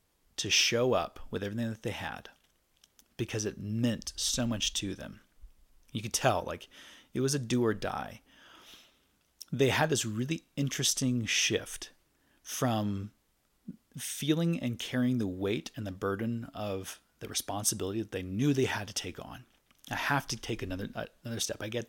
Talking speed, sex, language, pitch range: 165 wpm, male, English, 105-130 Hz